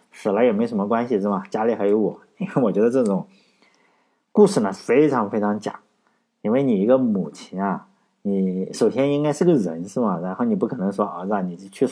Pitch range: 105-175 Hz